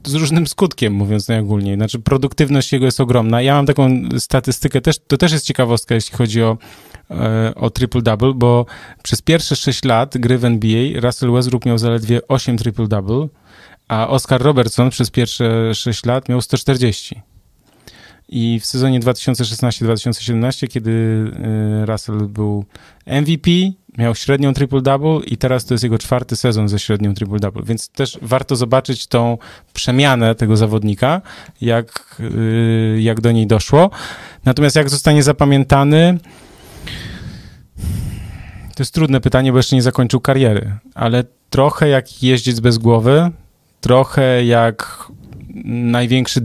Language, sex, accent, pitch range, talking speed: Polish, male, native, 115-135 Hz, 135 wpm